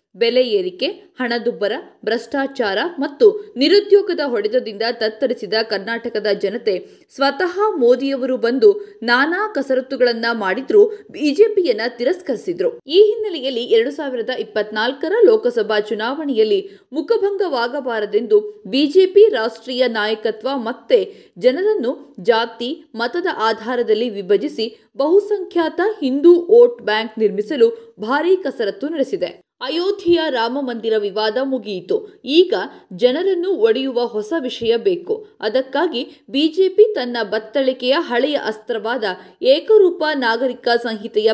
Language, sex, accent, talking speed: Kannada, female, native, 90 wpm